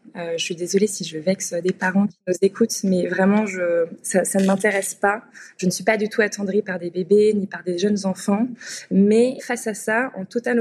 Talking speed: 230 wpm